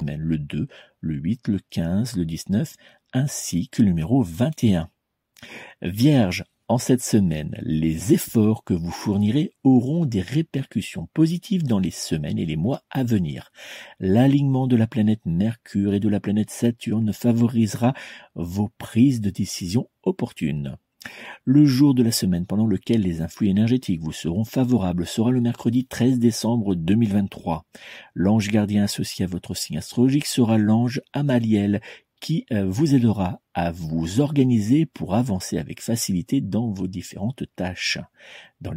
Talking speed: 145 wpm